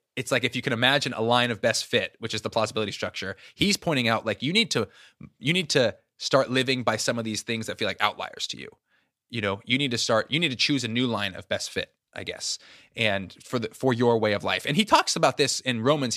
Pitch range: 115-150 Hz